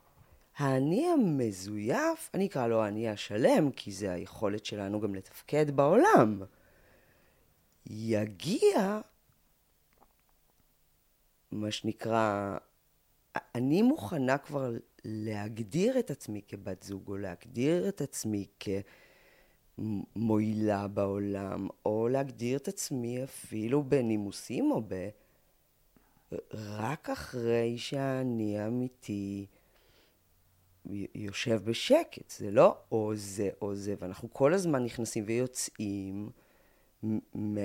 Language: Hebrew